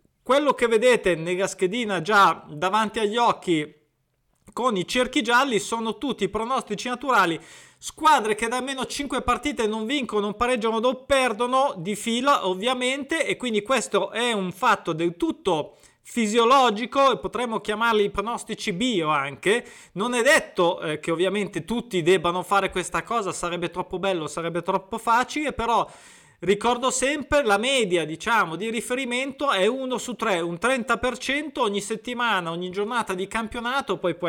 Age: 30-49